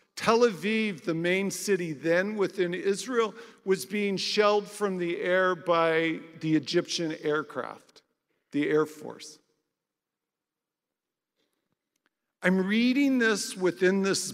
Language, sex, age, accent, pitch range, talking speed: English, male, 50-69, American, 160-215 Hz, 110 wpm